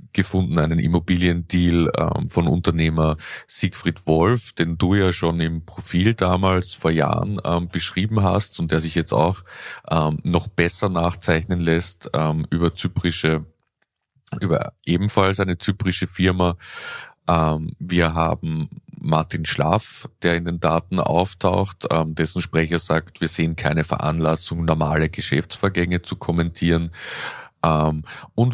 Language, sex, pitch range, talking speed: German, male, 80-95 Hz, 115 wpm